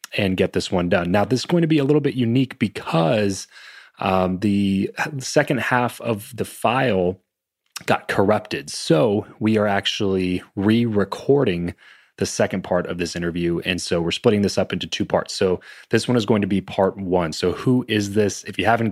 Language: English